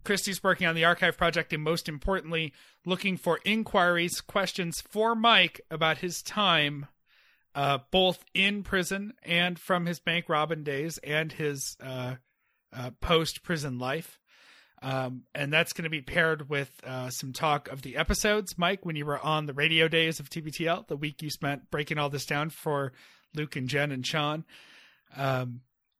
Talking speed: 170 wpm